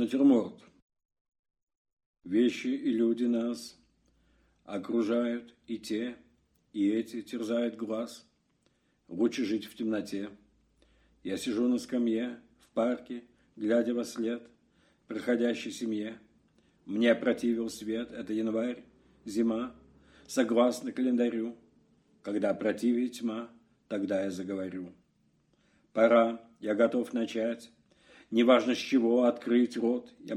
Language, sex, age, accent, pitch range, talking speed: Russian, male, 50-69, native, 115-135 Hz, 100 wpm